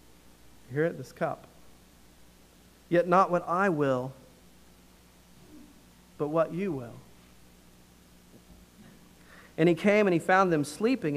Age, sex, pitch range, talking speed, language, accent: 40-59, male, 135-175 Hz, 115 wpm, English, American